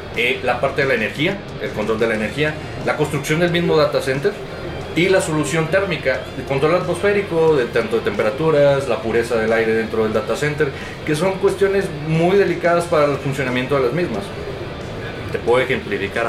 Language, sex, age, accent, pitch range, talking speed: Spanish, male, 30-49, Mexican, 110-140 Hz, 180 wpm